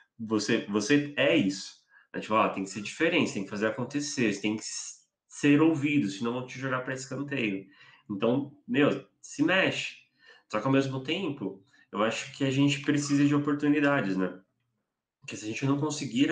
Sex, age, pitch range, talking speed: male, 20-39, 100-125 Hz, 185 wpm